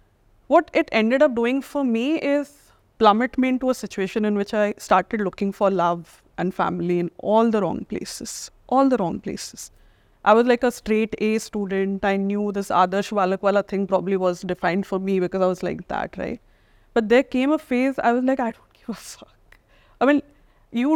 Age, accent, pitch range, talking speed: 20-39, Indian, 195-260 Hz, 205 wpm